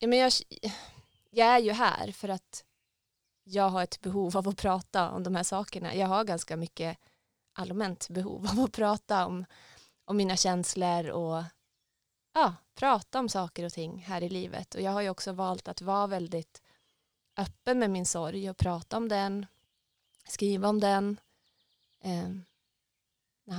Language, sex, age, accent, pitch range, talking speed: Swedish, female, 20-39, native, 175-200 Hz, 155 wpm